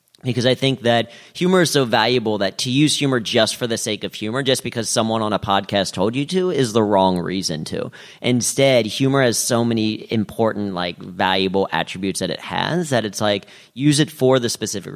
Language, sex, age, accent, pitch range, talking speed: English, male, 30-49, American, 100-130 Hz, 210 wpm